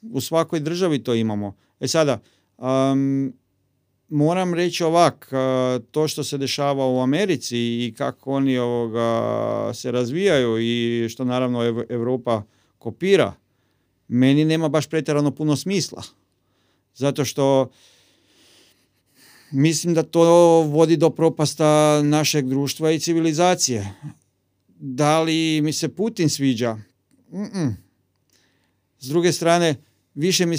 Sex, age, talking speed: male, 40-59, 120 wpm